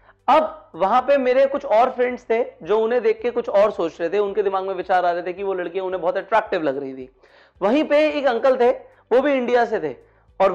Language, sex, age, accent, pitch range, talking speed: Hindi, male, 30-49, native, 195-275 Hz, 250 wpm